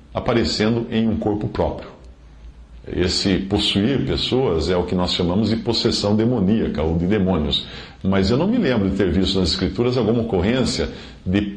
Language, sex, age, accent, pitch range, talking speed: English, male, 50-69, Brazilian, 85-110 Hz, 165 wpm